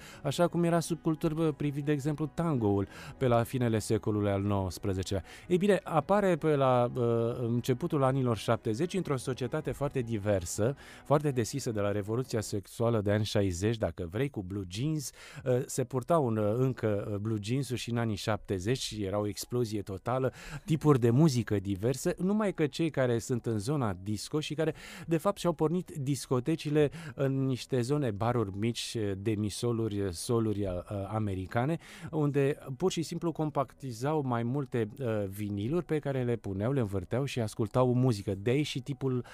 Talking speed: 160 wpm